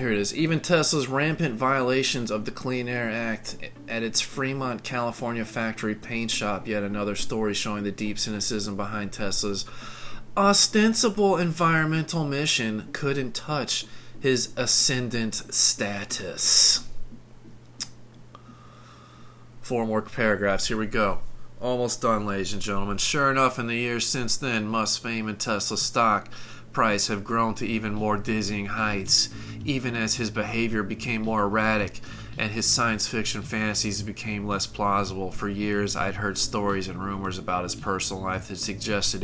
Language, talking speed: English, 145 wpm